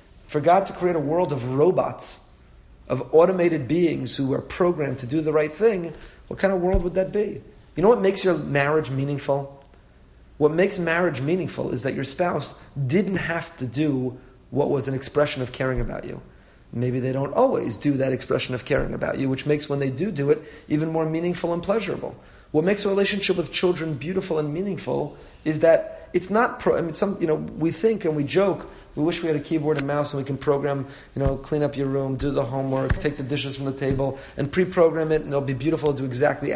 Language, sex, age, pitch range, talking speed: English, male, 40-59, 135-180 Hz, 225 wpm